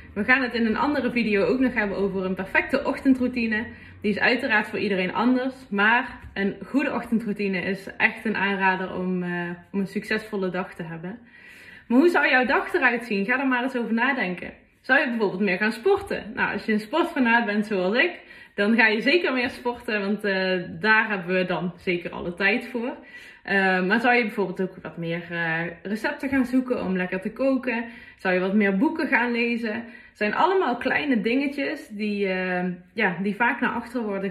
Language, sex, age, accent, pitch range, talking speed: Dutch, female, 20-39, Dutch, 190-245 Hz, 200 wpm